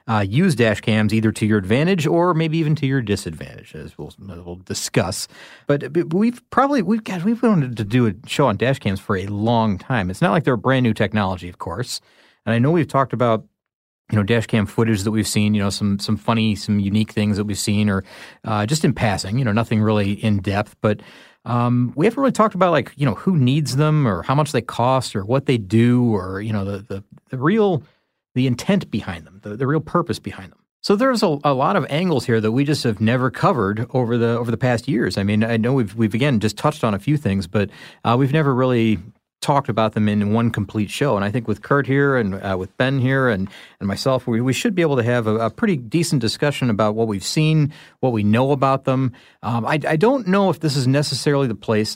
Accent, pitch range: American, 105-140 Hz